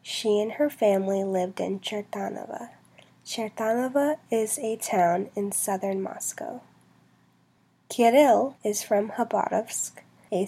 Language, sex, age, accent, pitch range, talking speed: English, female, 20-39, American, 195-225 Hz, 110 wpm